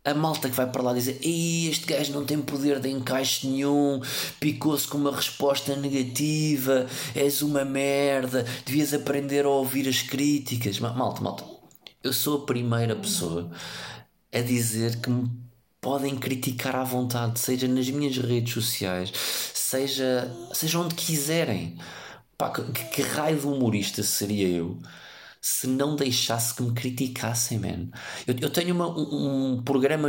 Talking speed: 140 wpm